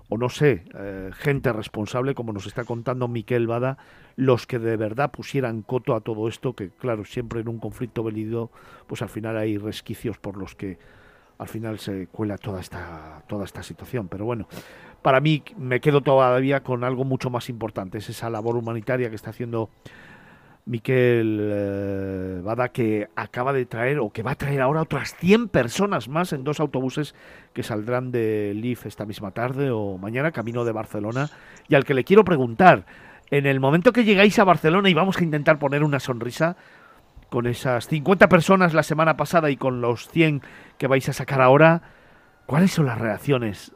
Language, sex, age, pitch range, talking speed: Spanish, male, 50-69, 110-150 Hz, 185 wpm